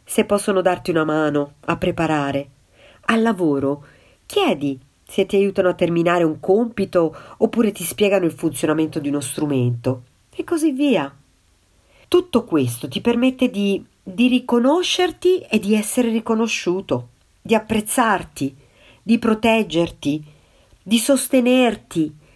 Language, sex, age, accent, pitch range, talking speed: Italian, female, 50-69, native, 140-240 Hz, 120 wpm